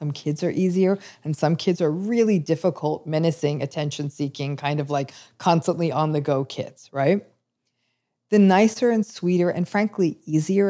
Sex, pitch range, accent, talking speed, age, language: female, 150-195 Hz, American, 155 wpm, 40-59, English